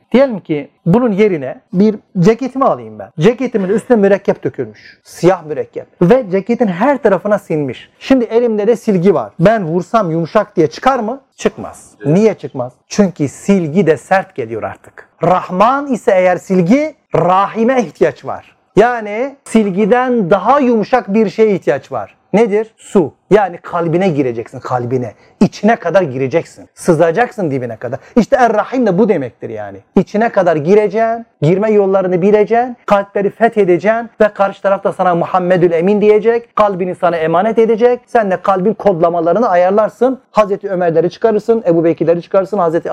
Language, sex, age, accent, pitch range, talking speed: Turkish, male, 40-59, native, 175-230 Hz, 145 wpm